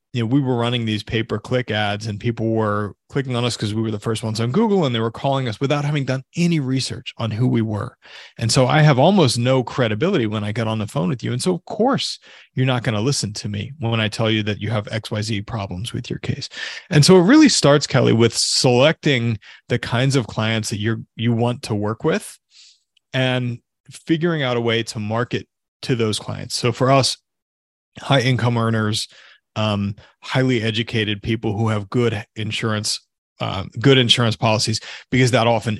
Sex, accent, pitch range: male, American, 110-130 Hz